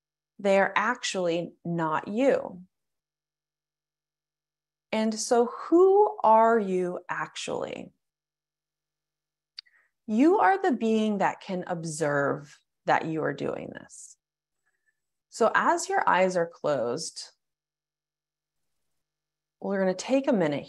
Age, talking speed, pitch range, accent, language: 30-49, 100 wpm, 155-220 Hz, American, English